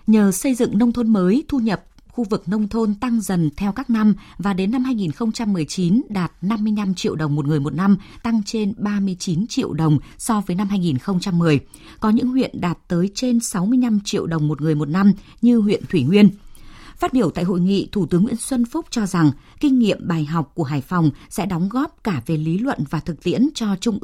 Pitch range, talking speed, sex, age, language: 165-230 Hz, 215 wpm, female, 20-39, Vietnamese